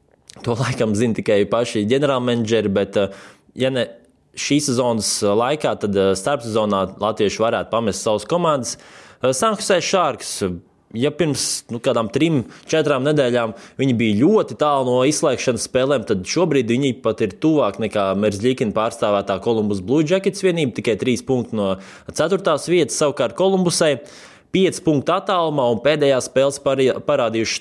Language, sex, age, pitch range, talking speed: English, male, 20-39, 105-140 Hz, 140 wpm